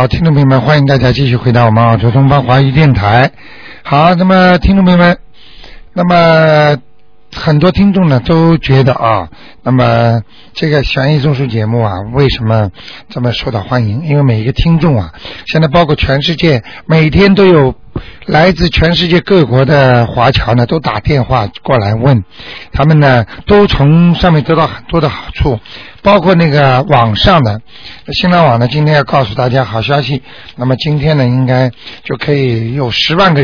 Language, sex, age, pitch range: Chinese, male, 60-79, 125-160 Hz